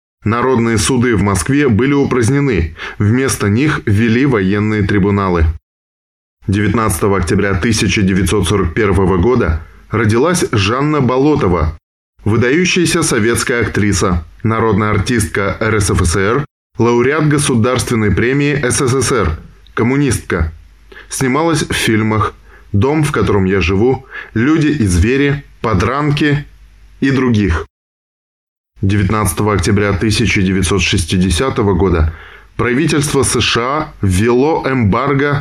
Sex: male